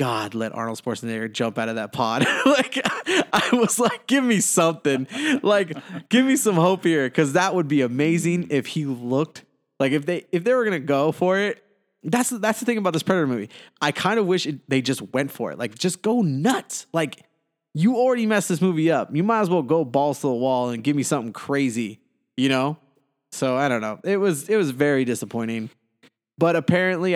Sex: male